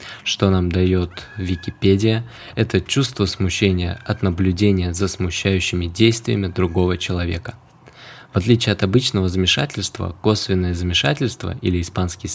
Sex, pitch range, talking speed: male, 90-115 Hz, 110 wpm